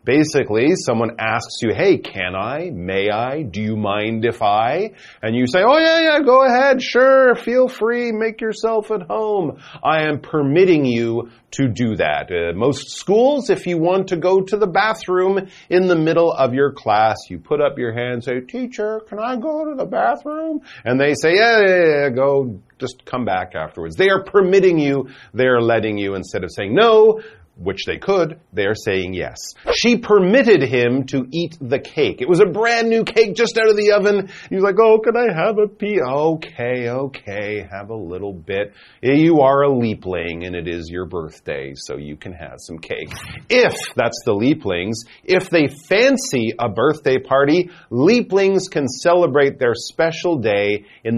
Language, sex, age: Chinese, male, 40-59